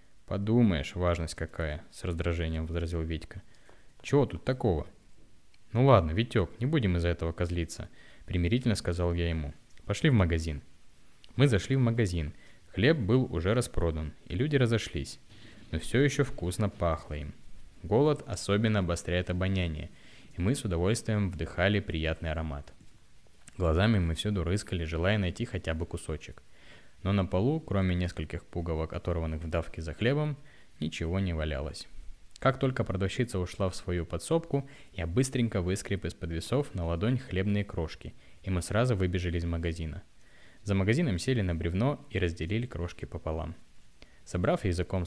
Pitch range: 85-110 Hz